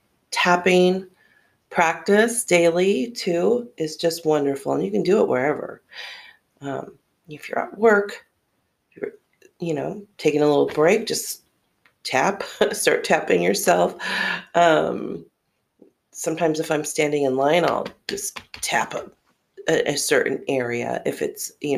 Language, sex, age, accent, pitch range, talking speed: English, female, 40-59, American, 140-180 Hz, 125 wpm